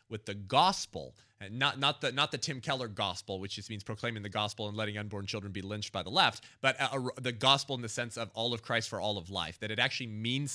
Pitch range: 105-130 Hz